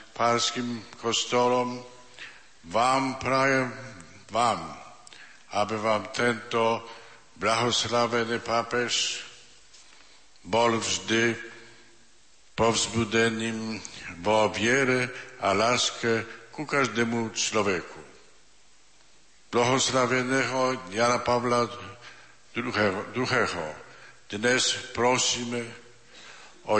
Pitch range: 110-125 Hz